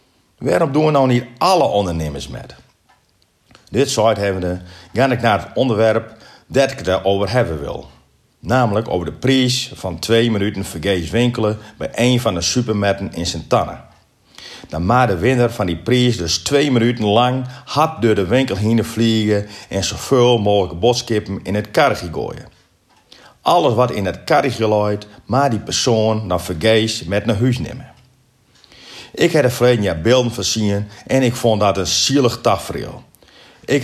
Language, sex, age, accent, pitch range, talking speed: Dutch, male, 40-59, Dutch, 100-125 Hz, 160 wpm